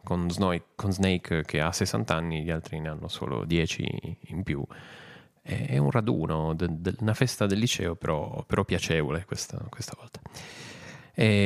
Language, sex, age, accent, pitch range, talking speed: English, male, 30-49, Italian, 85-110 Hz, 170 wpm